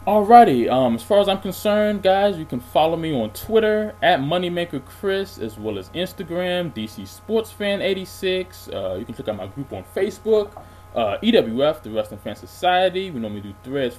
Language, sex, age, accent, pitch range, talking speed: English, male, 20-39, American, 105-175 Hz, 185 wpm